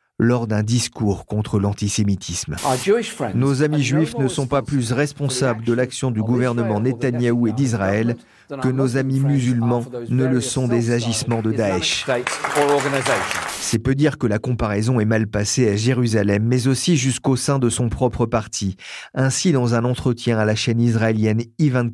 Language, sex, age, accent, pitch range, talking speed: French, male, 40-59, French, 110-130 Hz, 165 wpm